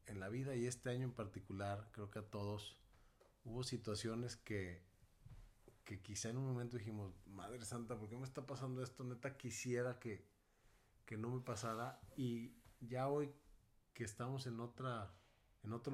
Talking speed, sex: 170 wpm, male